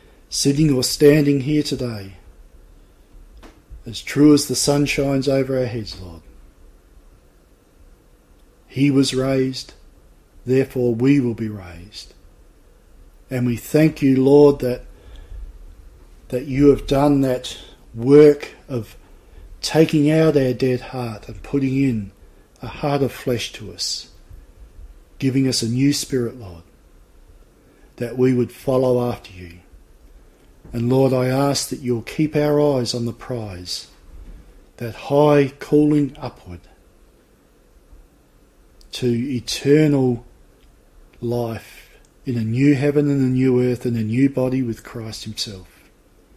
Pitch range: 95-135 Hz